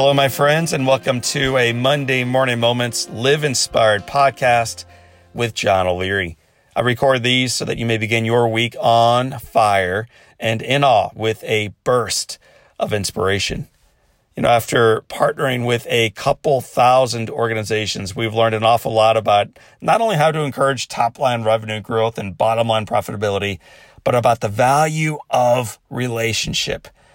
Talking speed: 155 wpm